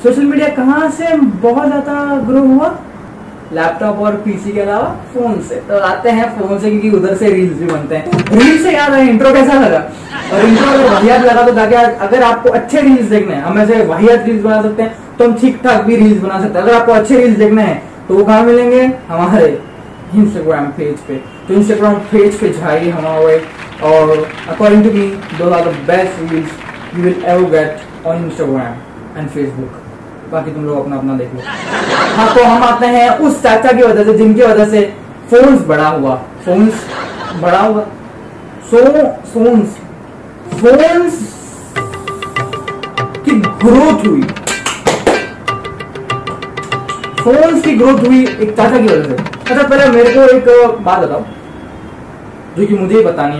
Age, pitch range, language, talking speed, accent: 20-39, 175-245 Hz, Hindi, 150 wpm, native